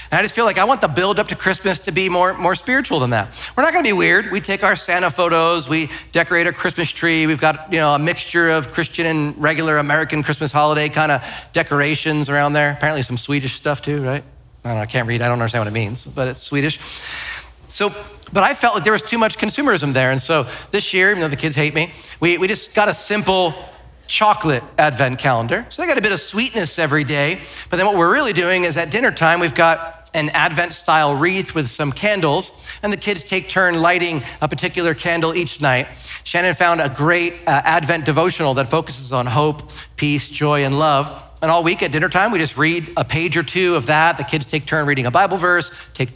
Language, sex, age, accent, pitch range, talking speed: English, male, 40-59, American, 145-180 Hz, 235 wpm